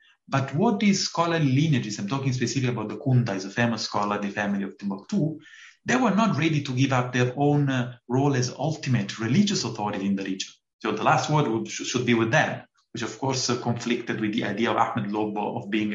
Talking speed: 220 wpm